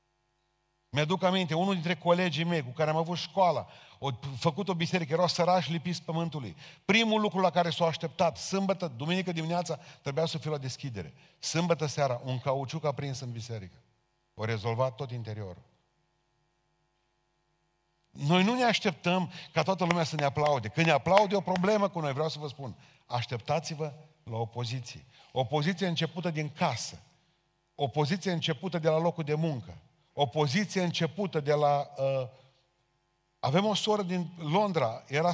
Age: 40-59